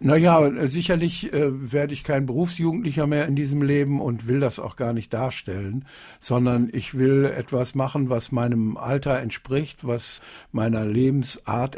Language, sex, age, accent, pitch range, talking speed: German, male, 60-79, German, 115-135 Hz, 155 wpm